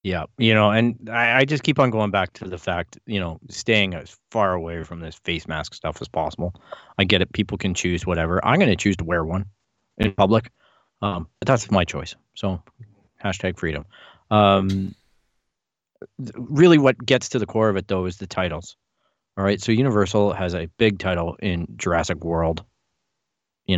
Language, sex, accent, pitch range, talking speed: English, male, American, 85-110 Hz, 190 wpm